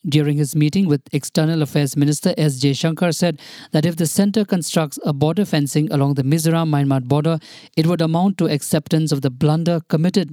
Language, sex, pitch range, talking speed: English, male, 145-170 Hz, 185 wpm